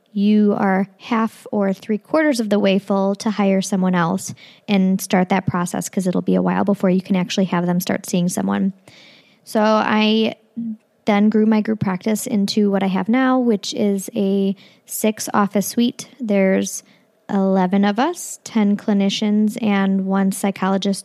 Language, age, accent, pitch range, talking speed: English, 20-39, American, 190-210 Hz, 165 wpm